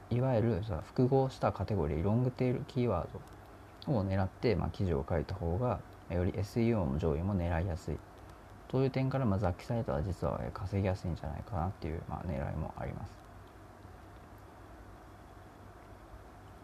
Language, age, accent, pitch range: Japanese, 30-49, native, 90-110 Hz